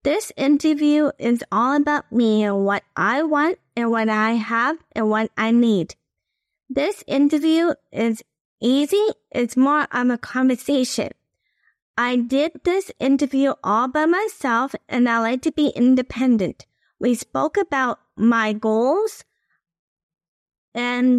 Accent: American